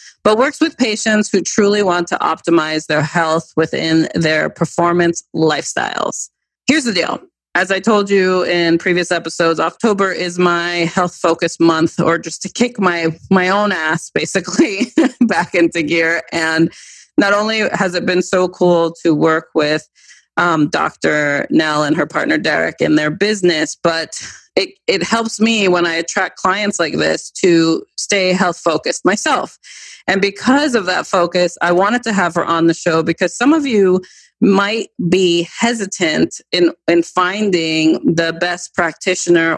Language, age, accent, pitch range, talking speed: English, 30-49, American, 165-200 Hz, 160 wpm